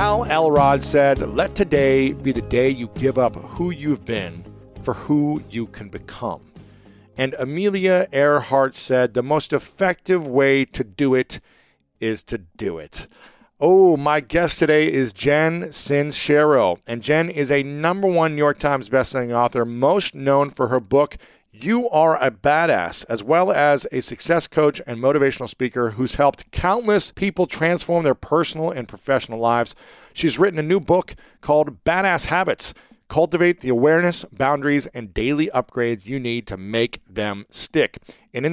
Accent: American